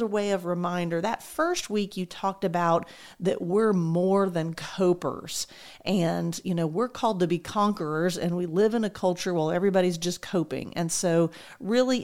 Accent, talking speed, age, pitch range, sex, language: American, 180 wpm, 40-59, 175-215 Hz, female, English